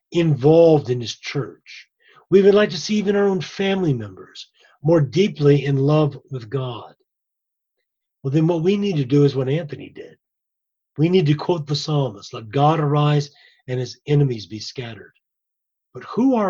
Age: 40-59